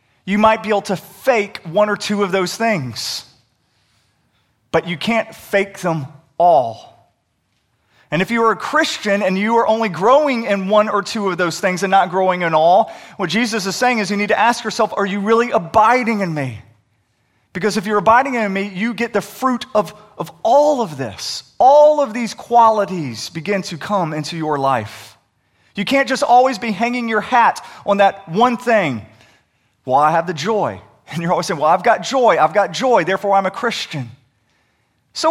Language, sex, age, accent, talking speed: English, male, 30-49, American, 195 wpm